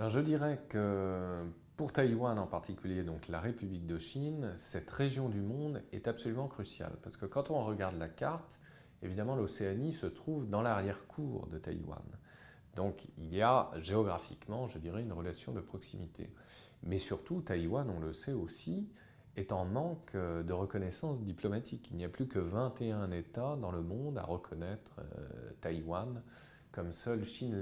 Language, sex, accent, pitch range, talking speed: French, male, French, 90-130 Hz, 165 wpm